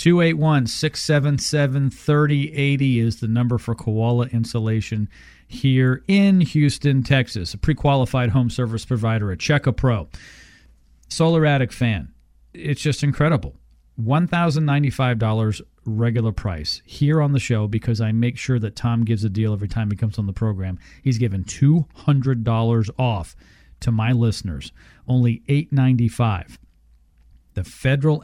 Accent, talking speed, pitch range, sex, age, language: American, 125 wpm, 105-140 Hz, male, 40-59, English